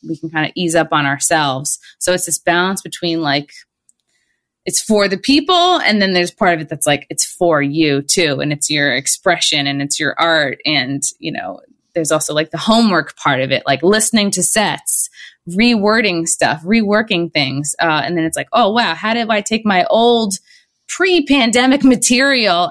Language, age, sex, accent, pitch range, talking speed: English, 20-39, female, American, 150-195 Hz, 195 wpm